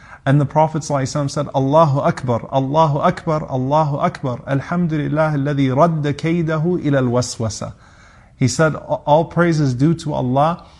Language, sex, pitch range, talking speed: English, male, 130-160 Hz, 135 wpm